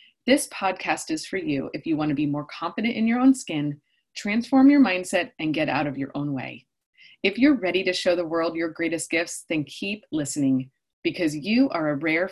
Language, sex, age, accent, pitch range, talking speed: English, female, 20-39, American, 190-280 Hz, 215 wpm